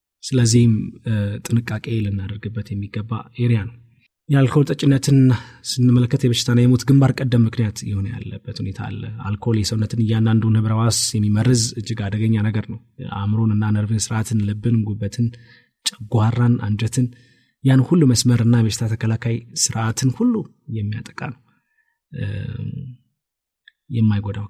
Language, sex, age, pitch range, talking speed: Amharic, male, 20-39, 105-125 Hz, 105 wpm